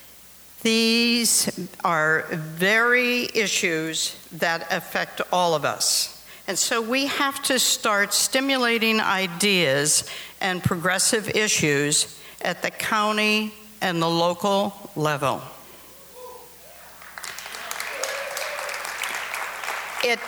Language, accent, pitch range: English, American, 170-225 Hz